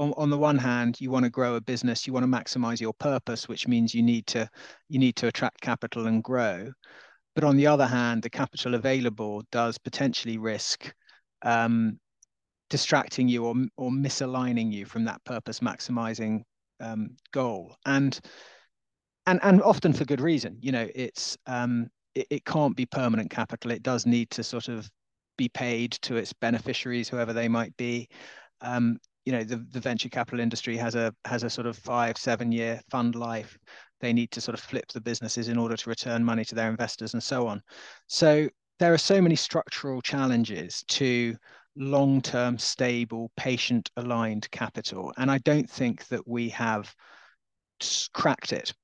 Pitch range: 115-130 Hz